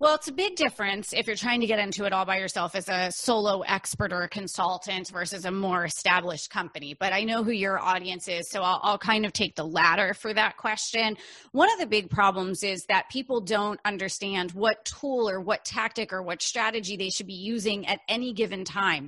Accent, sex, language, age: American, female, English, 30-49